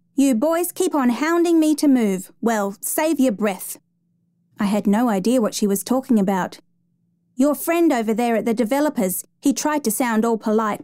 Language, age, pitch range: English, 30-49, 185-250 Hz